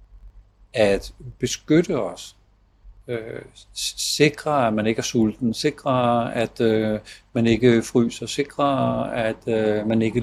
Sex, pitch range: male, 100-120 Hz